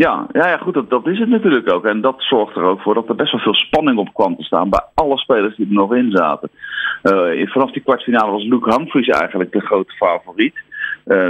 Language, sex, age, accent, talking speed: Dutch, male, 40-59, Dutch, 245 wpm